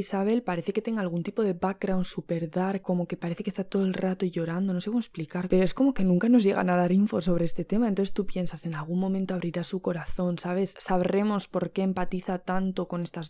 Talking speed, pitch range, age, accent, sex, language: 240 wpm, 180-200 Hz, 20-39, Spanish, female, Spanish